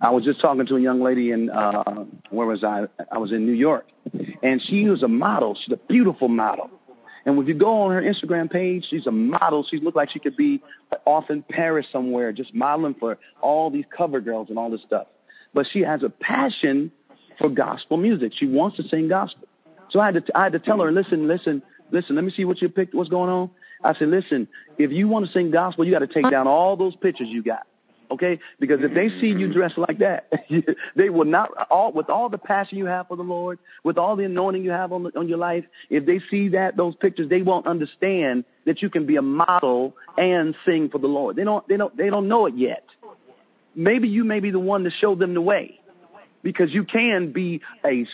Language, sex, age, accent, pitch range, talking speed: English, male, 40-59, American, 150-205 Hz, 235 wpm